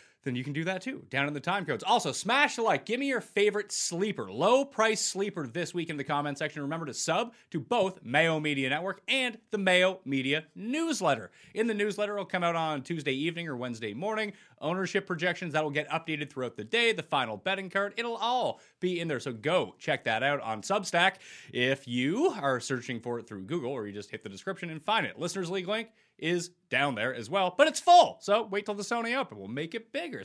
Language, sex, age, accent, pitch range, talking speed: English, male, 30-49, American, 140-220 Hz, 230 wpm